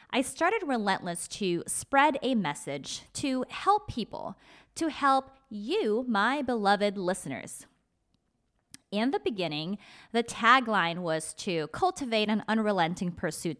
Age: 20-39